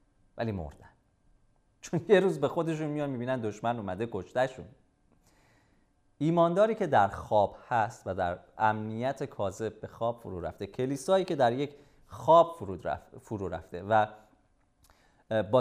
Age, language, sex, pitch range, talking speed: 30-49, Persian, male, 100-145 Hz, 130 wpm